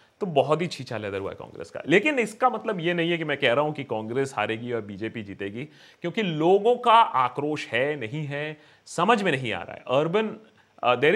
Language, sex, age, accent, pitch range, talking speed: Hindi, male, 30-49, native, 120-185 Hz, 215 wpm